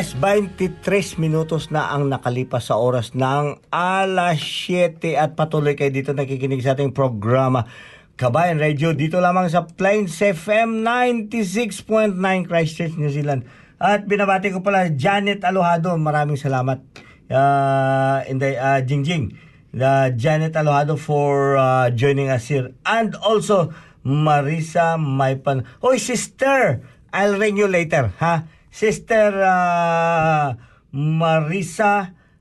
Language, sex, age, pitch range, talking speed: Filipino, male, 50-69, 135-175 Hz, 120 wpm